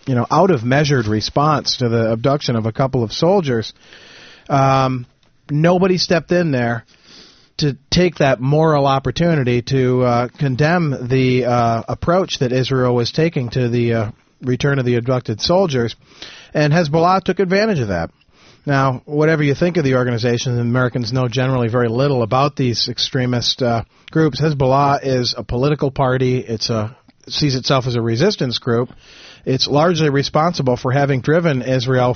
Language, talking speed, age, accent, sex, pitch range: English, 160 wpm, 40-59, American, male, 120-145 Hz